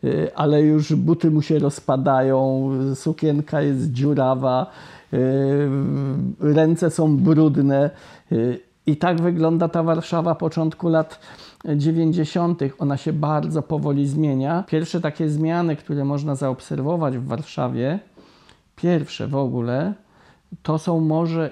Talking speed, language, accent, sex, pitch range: 110 wpm, Polish, native, male, 140-170 Hz